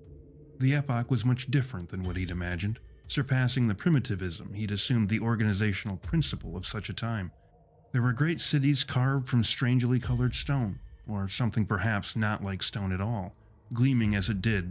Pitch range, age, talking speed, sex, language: 95-125 Hz, 40-59, 170 wpm, male, English